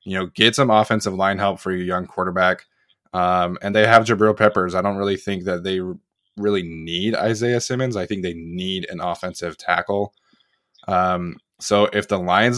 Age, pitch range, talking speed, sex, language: 20-39, 90-105 Hz, 185 wpm, male, English